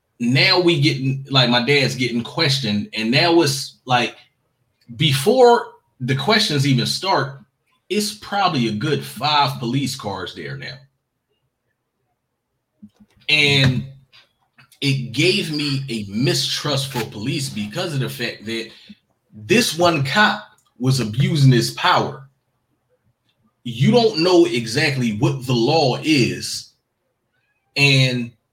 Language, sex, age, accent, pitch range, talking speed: English, male, 30-49, American, 120-145 Hz, 115 wpm